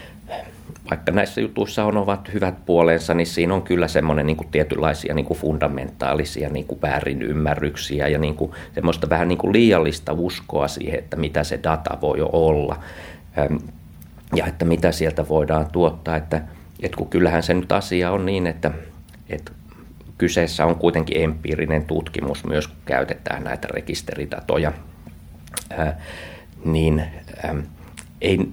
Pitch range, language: 75-85 Hz, Finnish